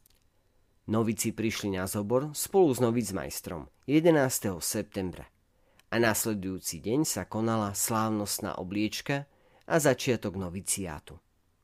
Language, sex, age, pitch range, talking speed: Slovak, male, 40-59, 95-115 Hz, 100 wpm